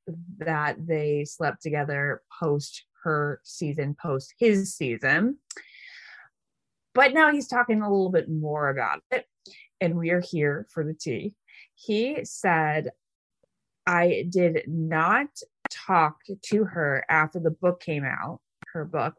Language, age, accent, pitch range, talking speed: English, 20-39, American, 155-225 Hz, 130 wpm